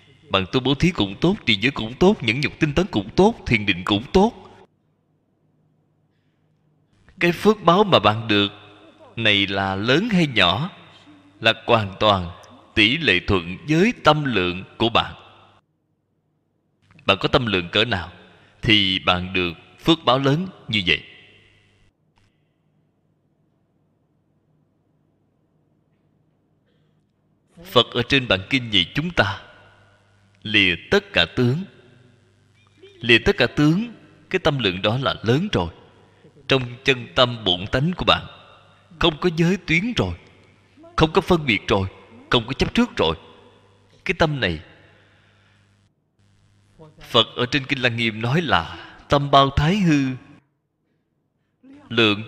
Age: 20-39